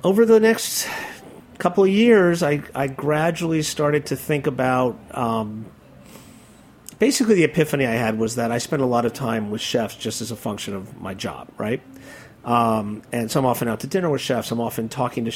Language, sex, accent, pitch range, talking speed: English, male, American, 115-140 Hz, 200 wpm